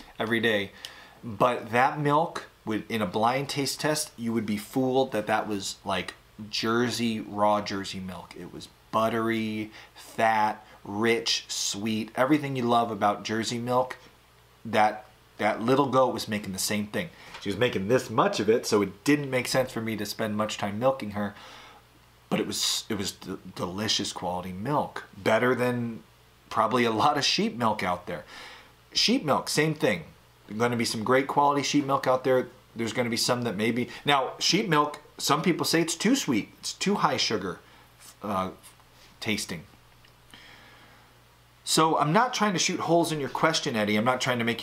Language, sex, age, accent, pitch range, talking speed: English, male, 30-49, American, 105-140 Hz, 180 wpm